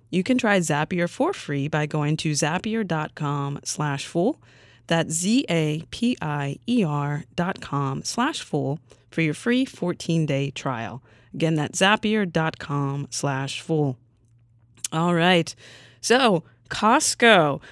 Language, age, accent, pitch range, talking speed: English, 20-39, American, 145-200 Hz, 110 wpm